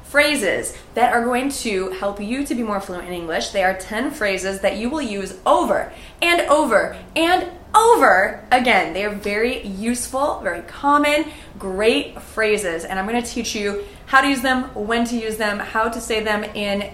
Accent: American